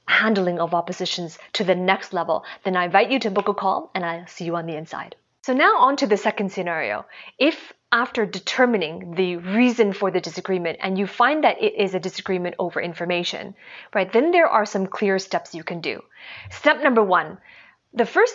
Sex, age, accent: female, 30-49, American